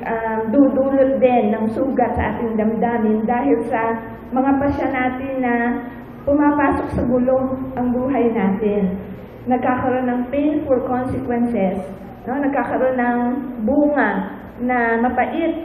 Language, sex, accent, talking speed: English, female, Filipino, 115 wpm